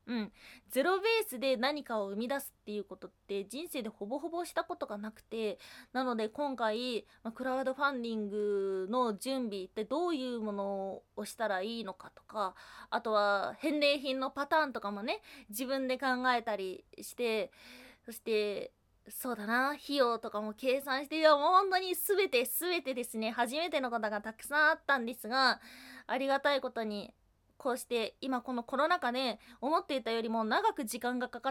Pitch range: 230-310 Hz